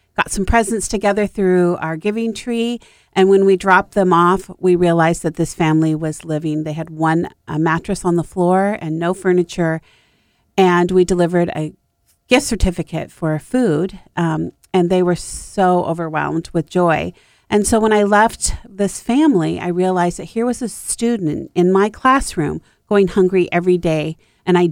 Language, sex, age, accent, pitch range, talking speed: English, female, 40-59, American, 175-205 Hz, 170 wpm